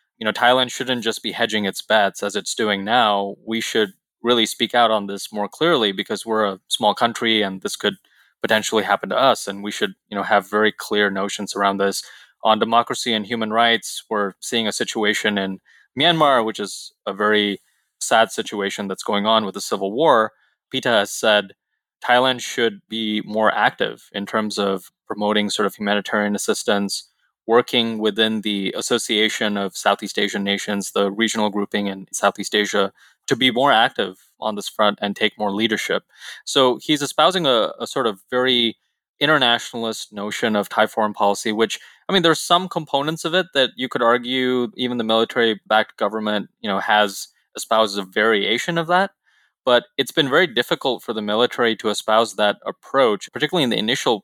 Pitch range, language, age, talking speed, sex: 105-120 Hz, English, 20-39, 180 wpm, male